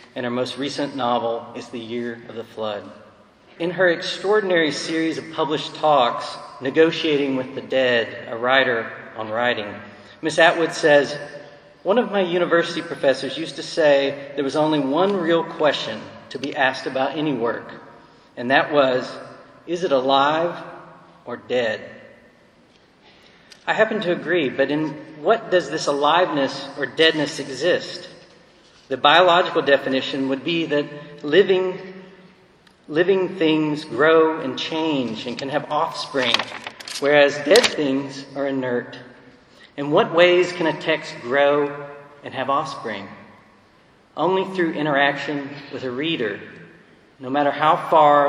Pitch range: 130-165 Hz